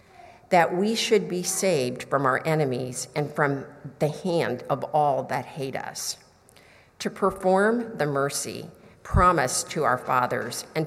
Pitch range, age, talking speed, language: 130-175 Hz, 50-69, 145 wpm, English